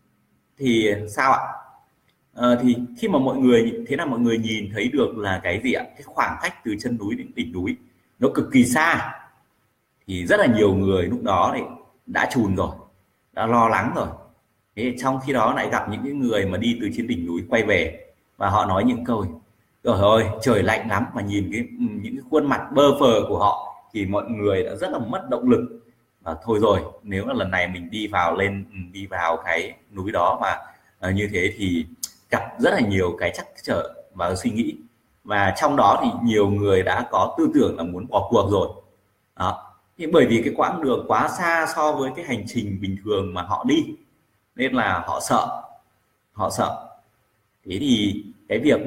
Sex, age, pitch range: male, 20-39, 95-130 Hz